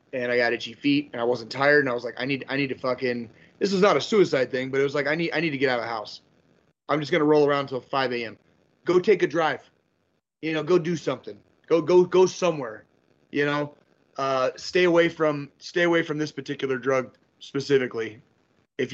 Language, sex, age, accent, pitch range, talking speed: English, male, 30-49, American, 125-150 Hz, 240 wpm